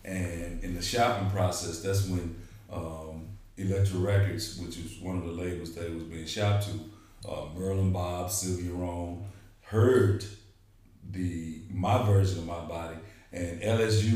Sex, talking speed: male, 155 wpm